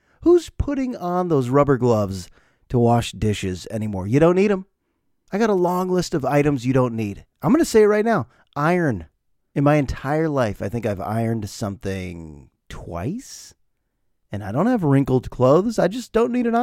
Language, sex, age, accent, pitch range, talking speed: English, male, 30-49, American, 110-150 Hz, 190 wpm